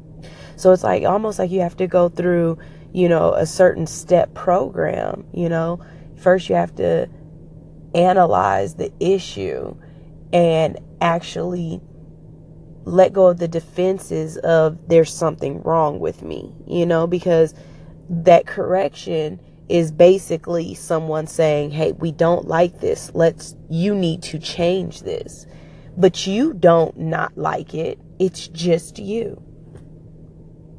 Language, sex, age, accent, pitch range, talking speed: English, female, 20-39, American, 155-180 Hz, 130 wpm